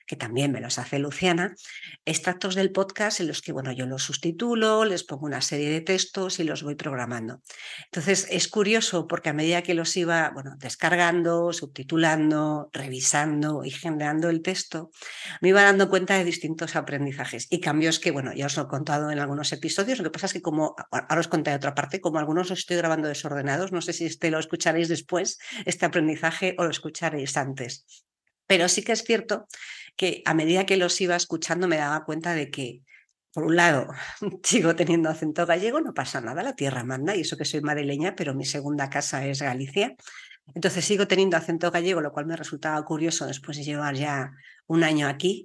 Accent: Spanish